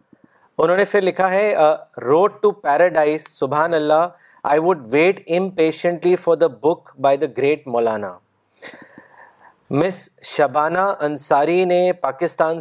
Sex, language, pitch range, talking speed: male, Urdu, 155-185 Hz, 105 wpm